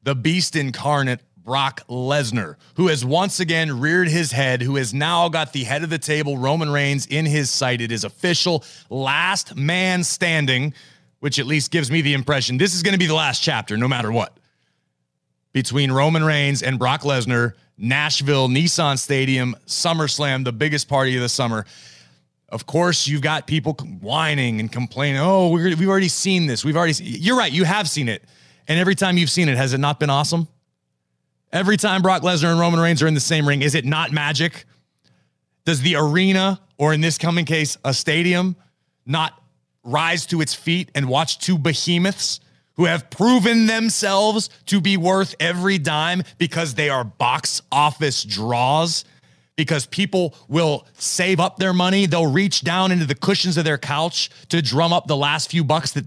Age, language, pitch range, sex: 30-49, English, 135-170 Hz, male